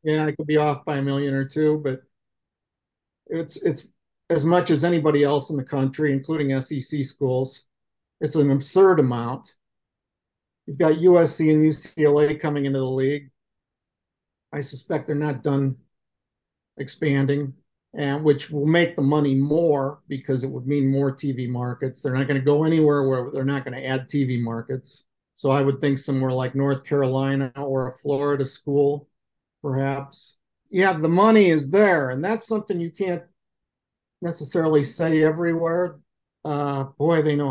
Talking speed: 160 wpm